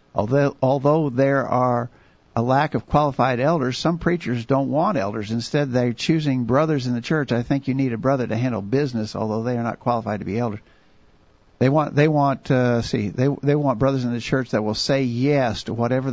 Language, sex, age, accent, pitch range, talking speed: English, male, 50-69, American, 115-135 Hz, 210 wpm